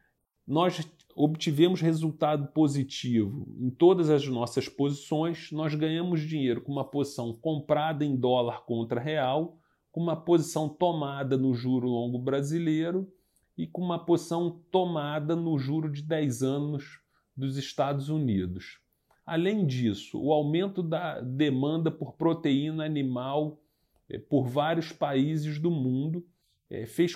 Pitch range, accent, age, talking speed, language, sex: 135-165 Hz, Brazilian, 40-59, 125 wpm, Portuguese, male